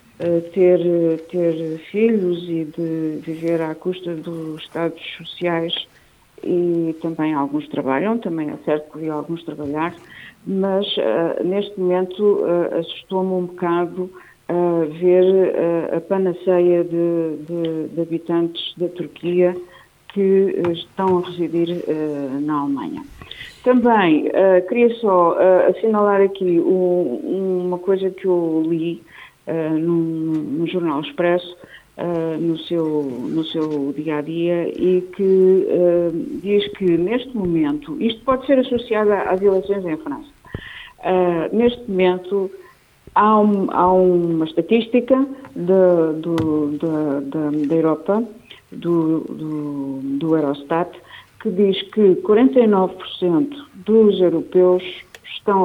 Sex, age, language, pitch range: female, 50-69, Portuguese, 165-195 Hz